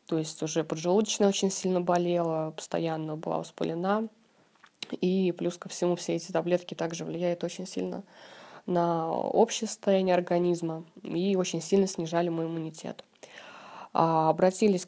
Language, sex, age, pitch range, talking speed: Russian, female, 20-39, 165-195 Hz, 130 wpm